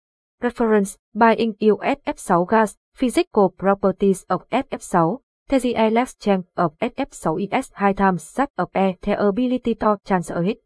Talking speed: 145 wpm